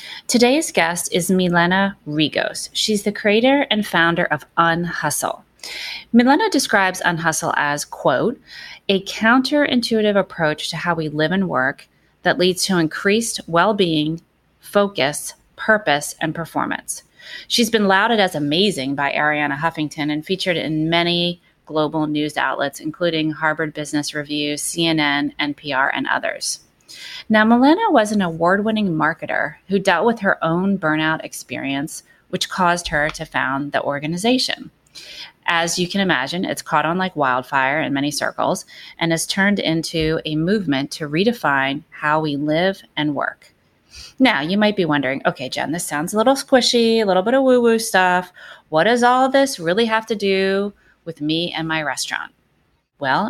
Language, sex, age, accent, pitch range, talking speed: English, female, 30-49, American, 150-205 Hz, 150 wpm